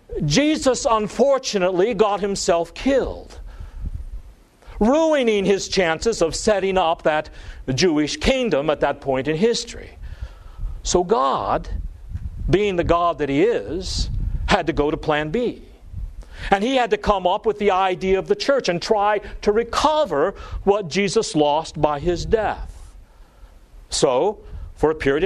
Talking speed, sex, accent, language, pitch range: 140 wpm, male, American, English, 130-210 Hz